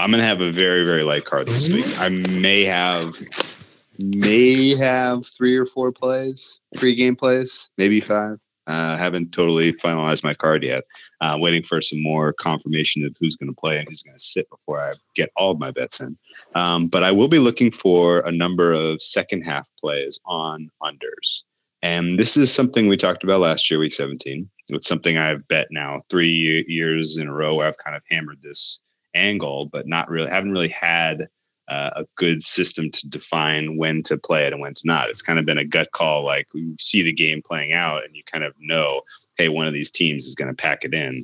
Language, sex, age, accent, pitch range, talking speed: English, male, 30-49, American, 80-100 Hz, 215 wpm